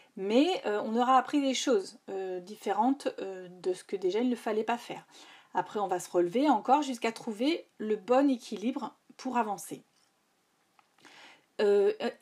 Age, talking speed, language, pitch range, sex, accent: 40-59, 160 wpm, French, 230-295 Hz, female, French